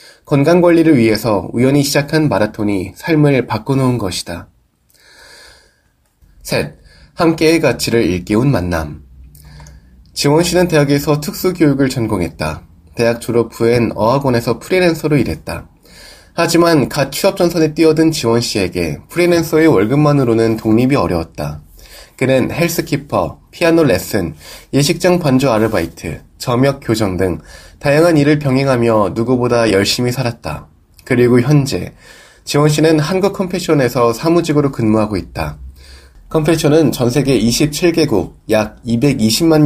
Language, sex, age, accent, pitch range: Korean, male, 20-39, native, 105-150 Hz